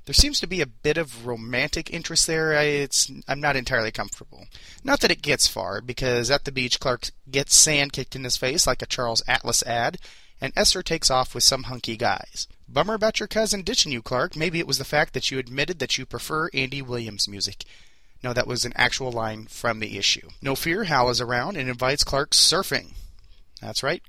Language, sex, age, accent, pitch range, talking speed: English, male, 30-49, American, 120-155 Hz, 210 wpm